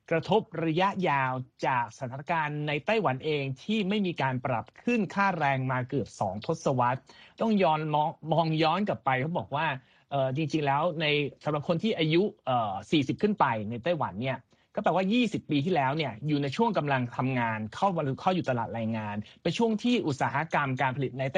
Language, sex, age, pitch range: Thai, male, 30-49, 130-175 Hz